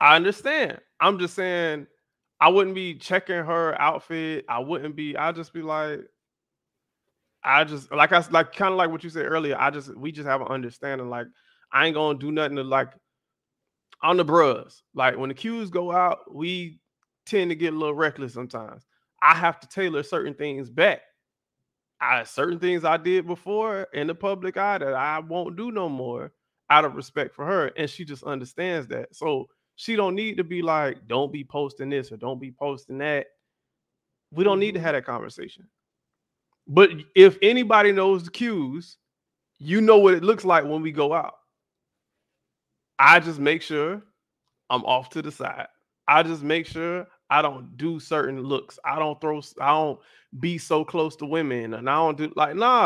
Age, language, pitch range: 20-39, English, 145-185 Hz